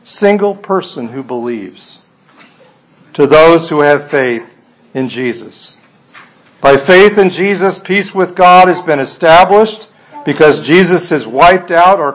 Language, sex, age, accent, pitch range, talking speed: English, male, 50-69, American, 140-180 Hz, 135 wpm